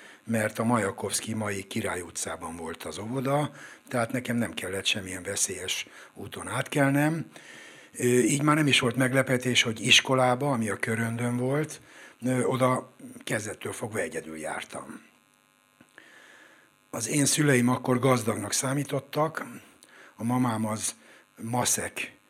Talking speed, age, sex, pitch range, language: 120 wpm, 60-79, male, 110-135 Hz, Hungarian